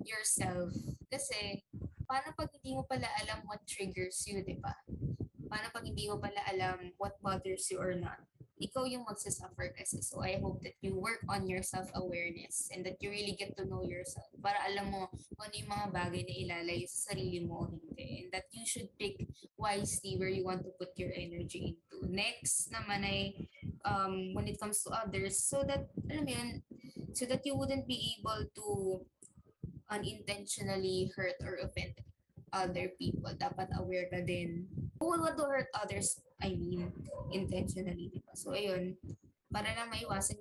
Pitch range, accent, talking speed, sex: 180-200 Hz, native, 175 wpm, female